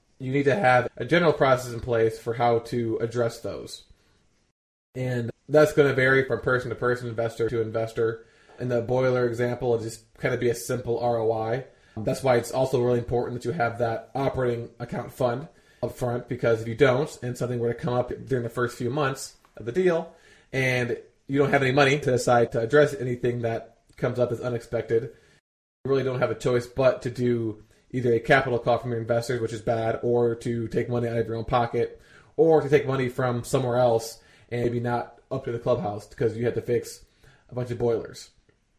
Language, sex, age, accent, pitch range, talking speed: English, male, 20-39, American, 115-135 Hz, 210 wpm